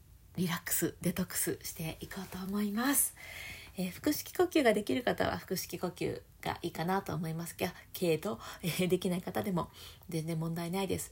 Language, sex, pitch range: Japanese, female, 130-205 Hz